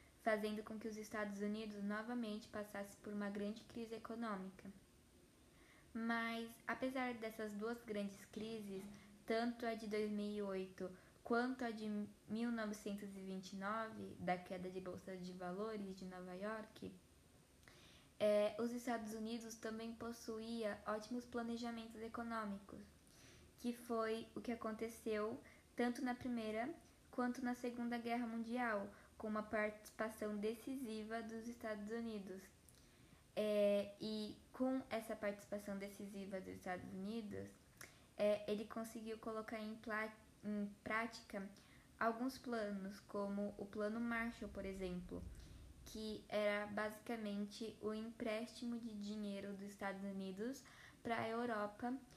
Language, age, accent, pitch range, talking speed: Portuguese, 10-29, Brazilian, 205-230 Hz, 115 wpm